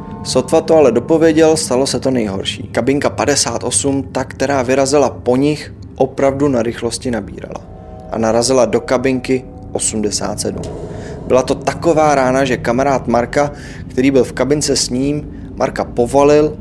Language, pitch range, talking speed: Czech, 110-140 Hz, 140 wpm